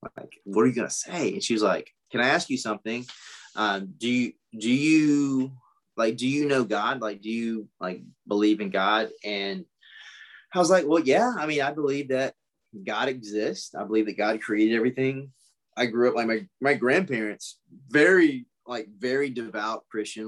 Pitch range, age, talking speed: 110-130 Hz, 20-39, 190 wpm